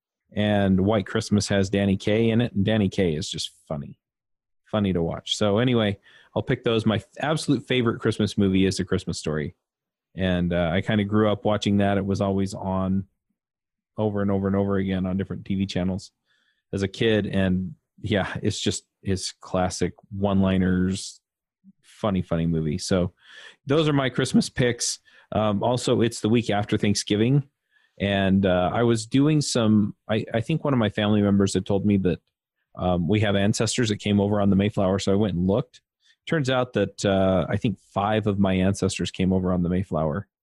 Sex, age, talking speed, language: male, 30-49, 190 wpm, English